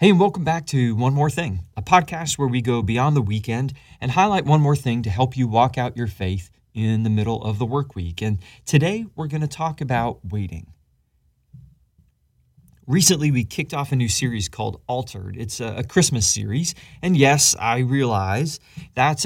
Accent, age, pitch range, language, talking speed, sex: American, 30-49, 105-145 Hz, English, 190 wpm, male